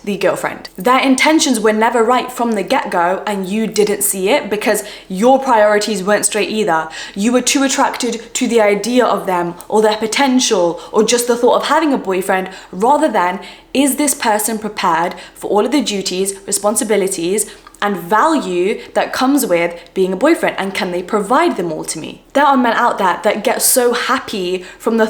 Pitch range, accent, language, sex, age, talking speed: 190-250 Hz, British, English, female, 10-29, 190 wpm